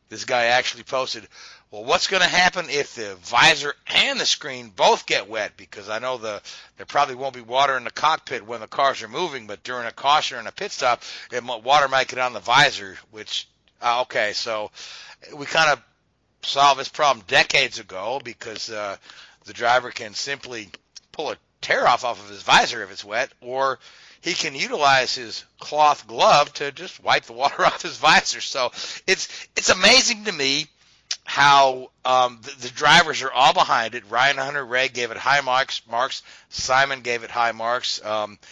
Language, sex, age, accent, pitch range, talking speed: English, male, 60-79, American, 115-140 Hz, 190 wpm